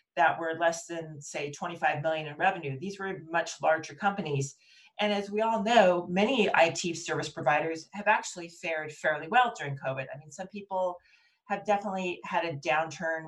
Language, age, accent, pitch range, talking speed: English, 40-59, American, 155-195 Hz, 175 wpm